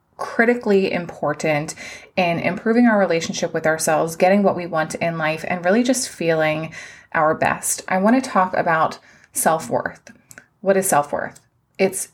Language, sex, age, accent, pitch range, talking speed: English, female, 20-39, American, 175-210 Hz, 150 wpm